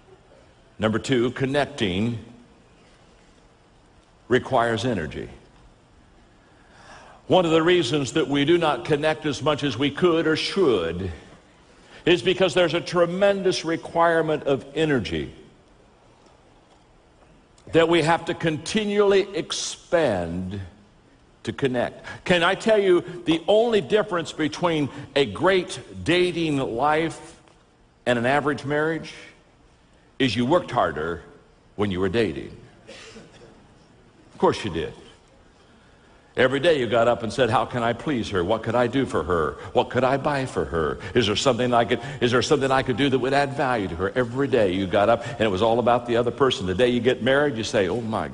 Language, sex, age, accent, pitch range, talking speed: English, male, 60-79, American, 115-160 Hz, 160 wpm